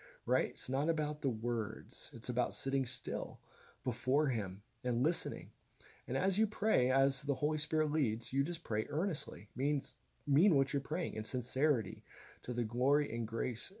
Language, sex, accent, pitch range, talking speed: English, male, American, 115-145 Hz, 170 wpm